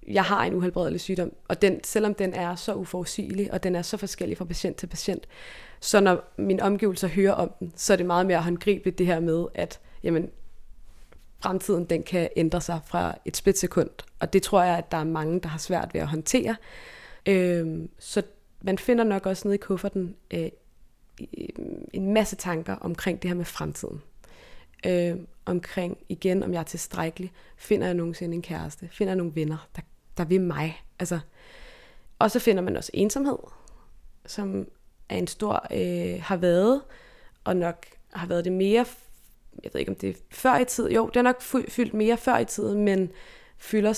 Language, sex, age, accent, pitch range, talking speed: Danish, female, 20-39, native, 175-205 Hz, 190 wpm